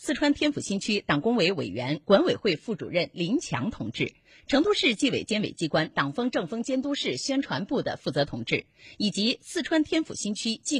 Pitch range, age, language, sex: 175-280 Hz, 30-49, Chinese, female